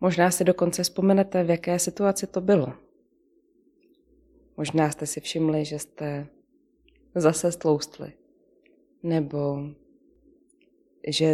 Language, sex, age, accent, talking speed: Czech, female, 20-39, native, 100 wpm